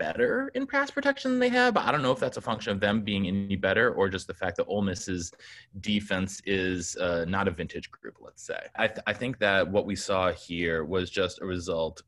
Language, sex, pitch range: English, male, 85-100 Hz